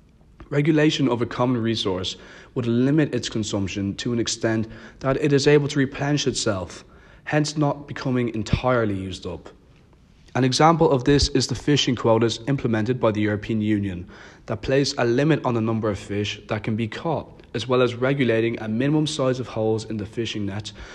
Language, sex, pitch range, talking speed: English, male, 105-130 Hz, 185 wpm